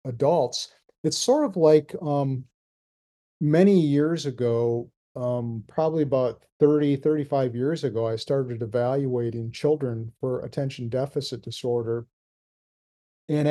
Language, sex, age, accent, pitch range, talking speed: English, male, 50-69, American, 125-155 Hz, 110 wpm